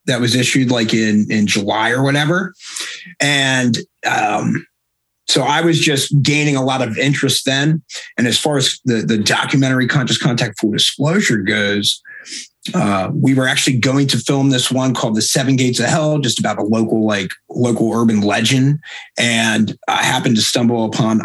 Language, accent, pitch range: English, American, 115-140 Hz